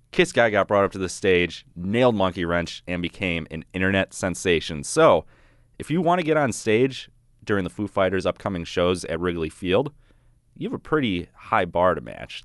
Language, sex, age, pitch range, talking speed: English, male, 30-49, 90-125 Hz, 200 wpm